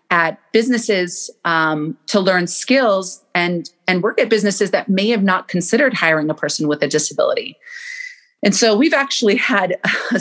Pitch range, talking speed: 165-210 Hz, 165 wpm